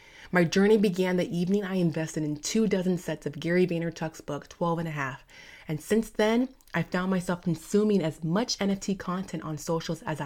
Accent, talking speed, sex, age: American, 195 wpm, female, 20-39